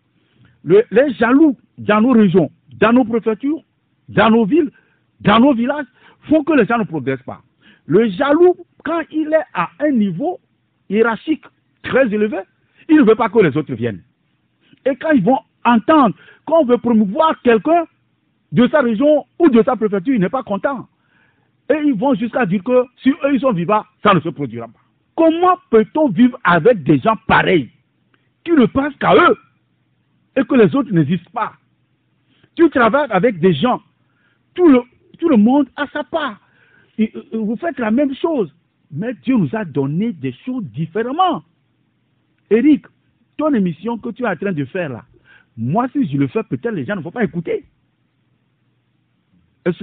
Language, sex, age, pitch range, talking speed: French, male, 50-69, 195-290 Hz, 175 wpm